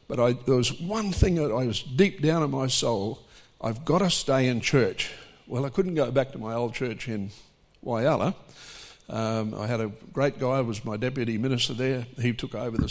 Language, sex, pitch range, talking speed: English, male, 115-145 Hz, 210 wpm